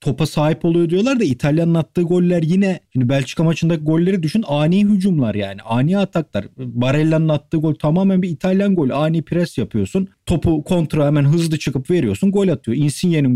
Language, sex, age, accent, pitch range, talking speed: Turkish, male, 40-59, native, 120-170 Hz, 170 wpm